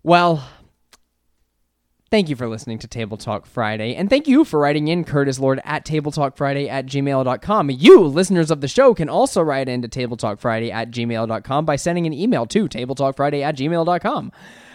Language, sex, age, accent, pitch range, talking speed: English, male, 20-39, American, 130-170 Hz, 170 wpm